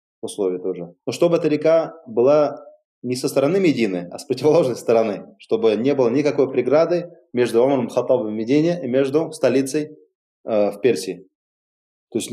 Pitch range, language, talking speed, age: 110-170 Hz, Russian, 160 wpm, 20-39